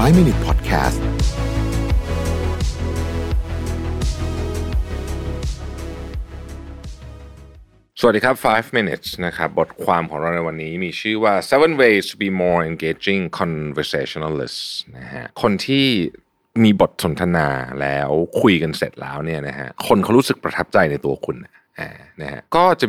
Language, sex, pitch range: Thai, male, 80-105 Hz